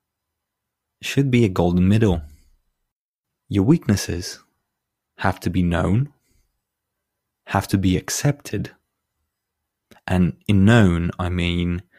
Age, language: 20-39, English